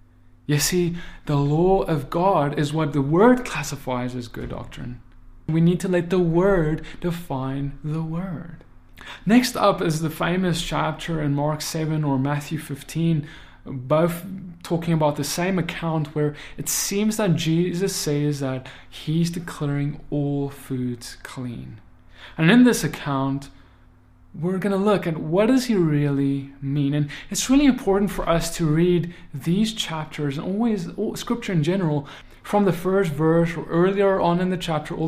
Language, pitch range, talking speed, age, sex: English, 140-180 Hz, 160 wpm, 20-39, male